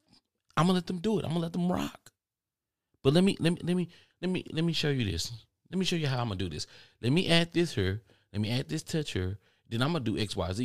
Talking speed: 280 wpm